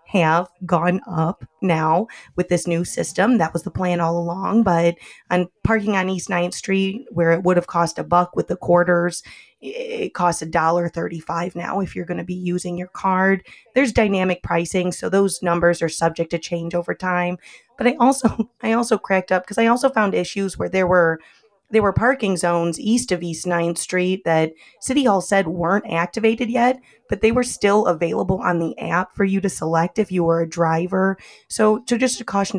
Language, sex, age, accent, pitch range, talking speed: English, female, 20-39, American, 170-210 Hz, 200 wpm